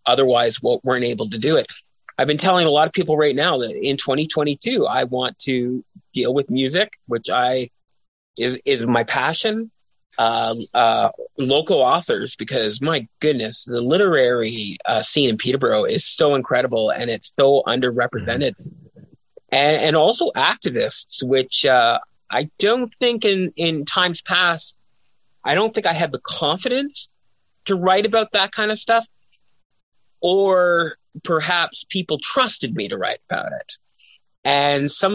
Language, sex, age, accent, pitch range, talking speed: English, male, 30-49, American, 125-165 Hz, 155 wpm